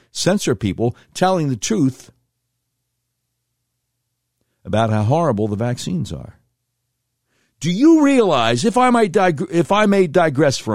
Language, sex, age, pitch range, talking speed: English, male, 60-79, 120-150 Hz, 130 wpm